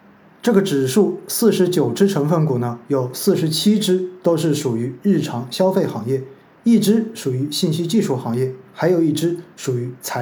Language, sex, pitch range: Chinese, male, 145-195 Hz